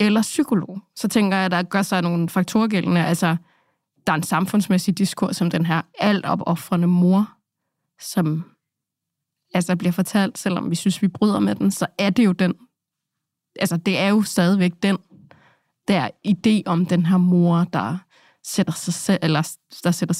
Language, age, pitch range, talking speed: Danish, 20-39, 170-195 Hz, 170 wpm